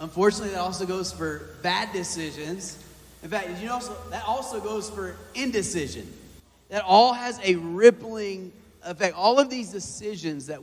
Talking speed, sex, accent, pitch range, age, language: 160 wpm, male, American, 135-175 Hz, 30-49, English